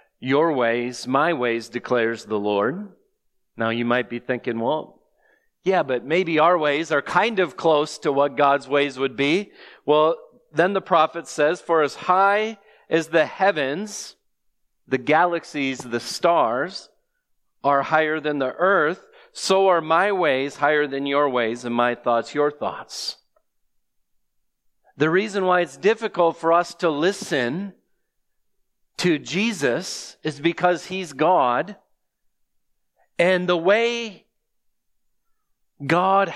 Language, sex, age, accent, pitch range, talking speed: English, male, 40-59, American, 140-195 Hz, 130 wpm